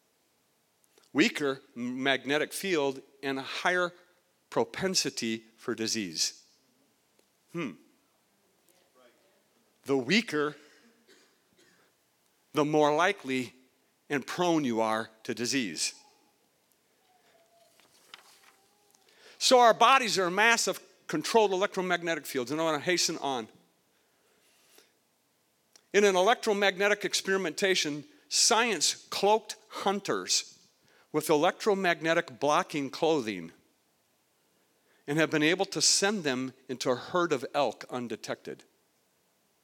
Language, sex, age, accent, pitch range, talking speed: English, male, 50-69, American, 145-205 Hz, 90 wpm